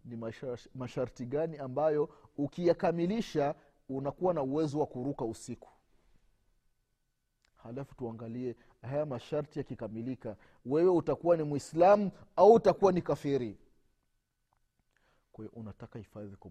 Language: Swahili